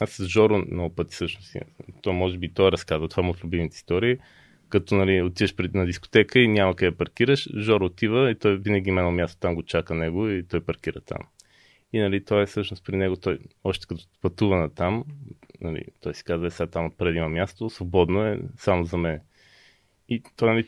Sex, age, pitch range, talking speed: male, 20-39, 85-110 Hz, 210 wpm